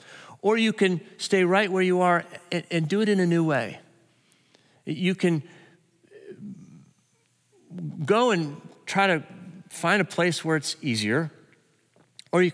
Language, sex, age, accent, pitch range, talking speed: English, male, 40-59, American, 130-175 Hz, 140 wpm